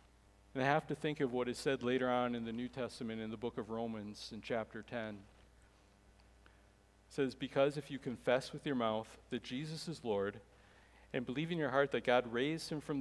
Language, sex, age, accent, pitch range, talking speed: English, male, 40-59, American, 115-155 Hz, 210 wpm